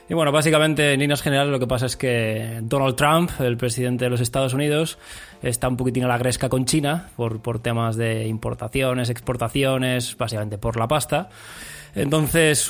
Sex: male